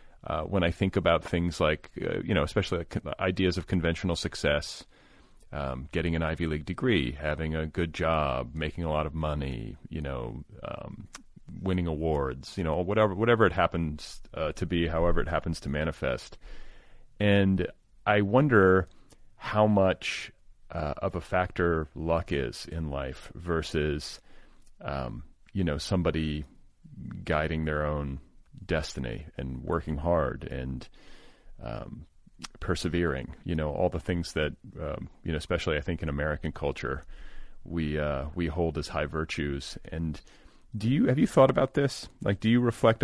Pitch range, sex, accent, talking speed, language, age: 75-95 Hz, male, American, 155 wpm, English, 30-49